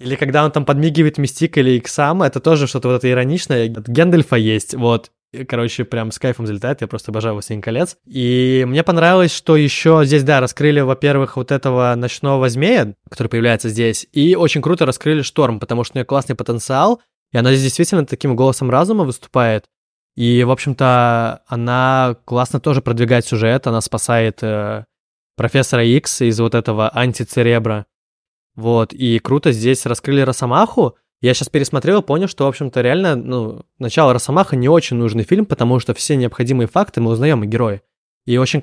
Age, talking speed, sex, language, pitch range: 20-39, 175 wpm, male, Russian, 115-145 Hz